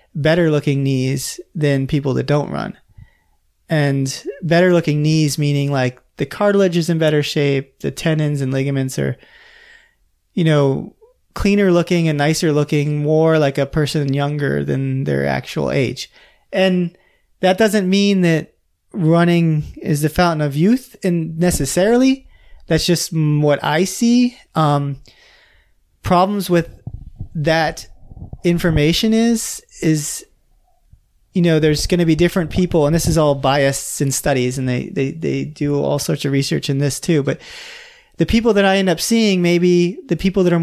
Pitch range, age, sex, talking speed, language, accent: 140-175 Hz, 30-49, male, 155 wpm, English, American